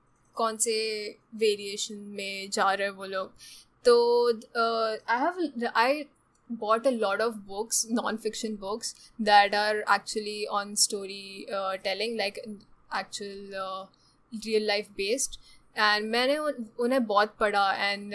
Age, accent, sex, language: 10-29, native, female, Hindi